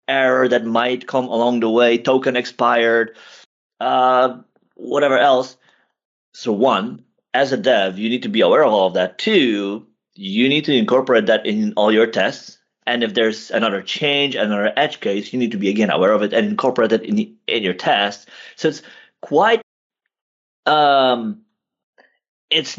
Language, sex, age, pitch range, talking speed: English, male, 30-49, 110-140 Hz, 170 wpm